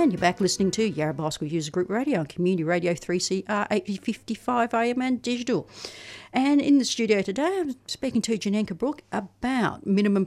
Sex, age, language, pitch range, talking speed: female, 50-69, English, 175-215 Hz, 175 wpm